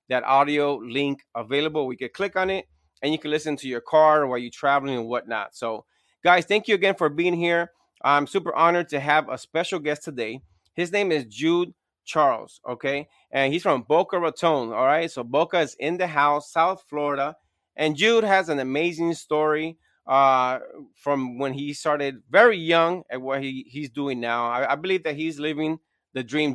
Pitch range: 135-175 Hz